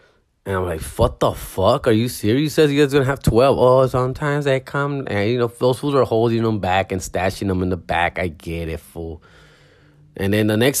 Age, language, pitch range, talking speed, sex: 20-39, English, 105-165 Hz, 240 wpm, male